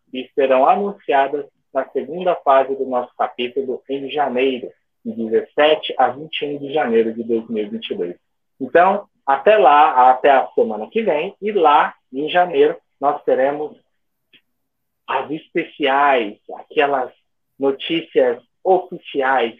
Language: Portuguese